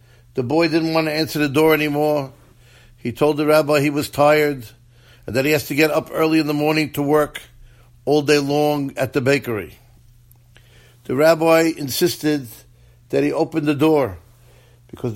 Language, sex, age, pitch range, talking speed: English, male, 50-69, 120-155 Hz, 175 wpm